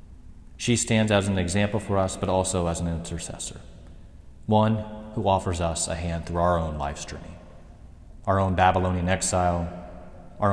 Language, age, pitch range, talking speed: English, 30-49, 80-95 Hz, 160 wpm